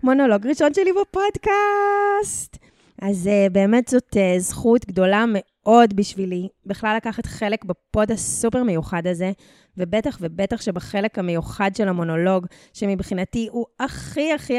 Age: 20-39